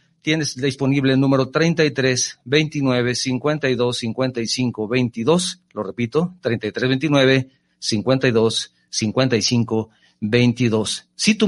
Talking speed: 95 wpm